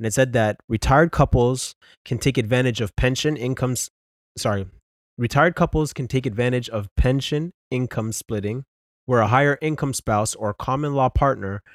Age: 20-39